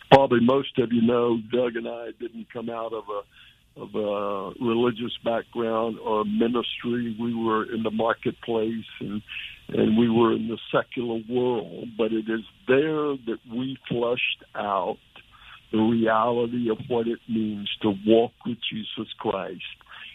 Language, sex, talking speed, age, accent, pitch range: English, male, 150 wpm, 60-79, American, 105-120 Hz